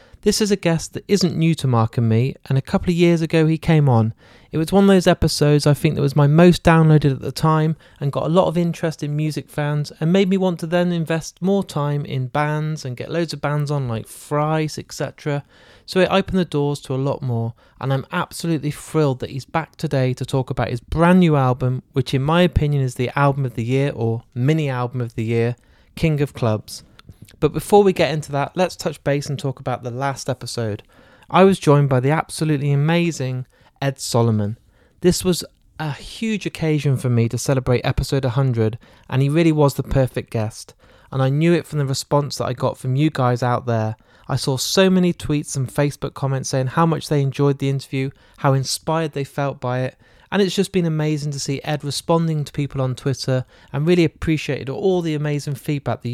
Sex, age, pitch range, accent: male, 30-49, 130-160 Hz, British